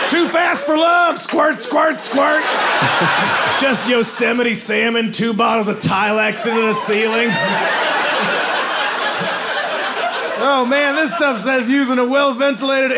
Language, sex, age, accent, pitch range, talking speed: Danish, male, 30-49, American, 180-275 Hz, 115 wpm